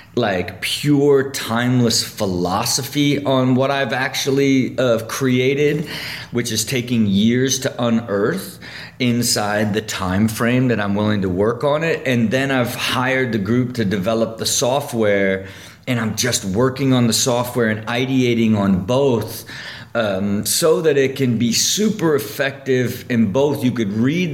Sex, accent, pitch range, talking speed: male, American, 110-135 Hz, 150 wpm